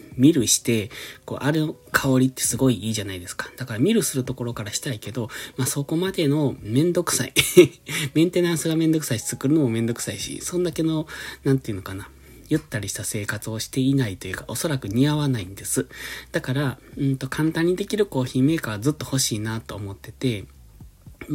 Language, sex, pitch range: Japanese, male, 110-145 Hz